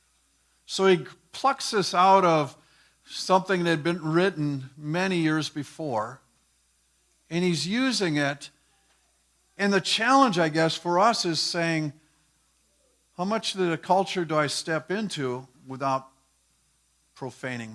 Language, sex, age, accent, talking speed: English, male, 50-69, American, 130 wpm